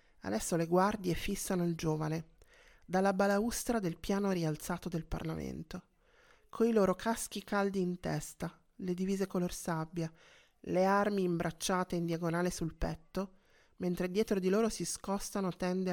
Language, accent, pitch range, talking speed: Italian, native, 165-195 Hz, 140 wpm